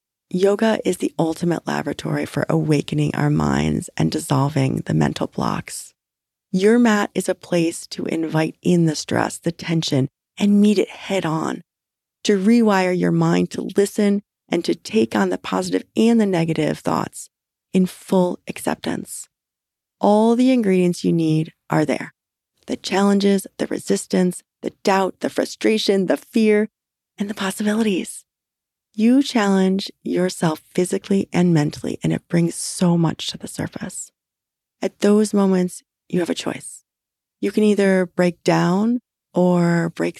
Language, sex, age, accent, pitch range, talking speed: English, female, 30-49, American, 155-205 Hz, 145 wpm